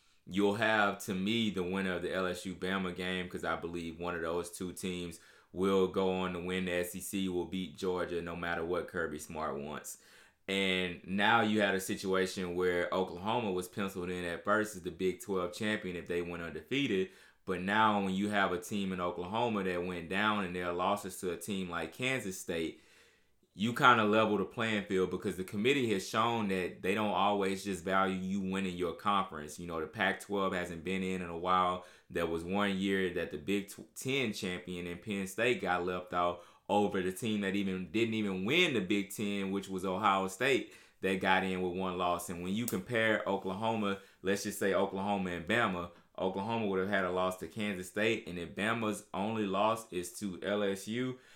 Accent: American